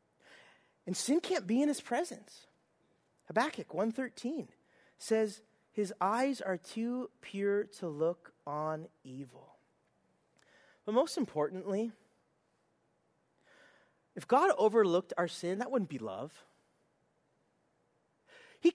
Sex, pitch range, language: male, 190-290 Hz, English